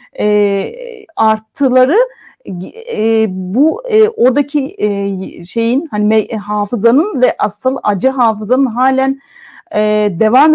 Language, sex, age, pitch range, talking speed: Turkish, female, 40-59, 210-260 Hz, 100 wpm